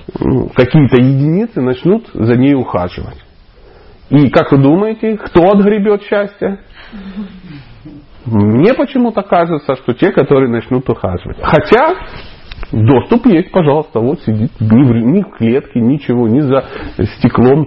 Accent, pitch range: native, 115-170 Hz